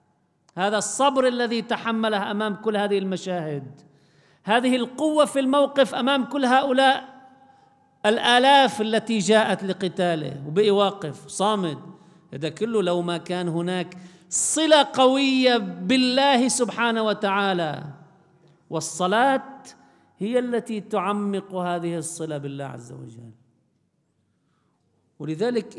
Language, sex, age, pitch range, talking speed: Arabic, male, 50-69, 150-225 Hz, 100 wpm